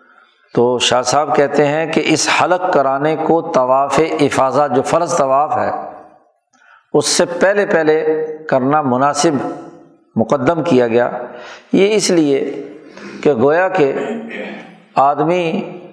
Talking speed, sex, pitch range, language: 120 wpm, male, 135-155 Hz, Urdu